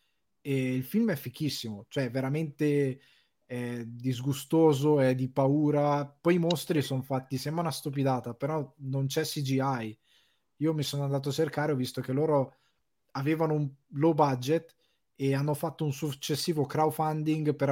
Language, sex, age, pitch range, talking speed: Italian, male, 20-39, 125-150 Hz, 150 wpm